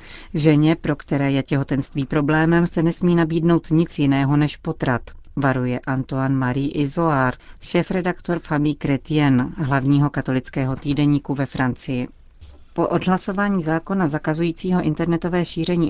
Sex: female